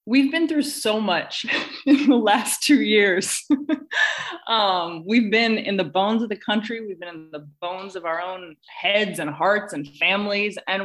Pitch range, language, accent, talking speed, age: 170-225 Hz, English, American, 185 wpm, 20-39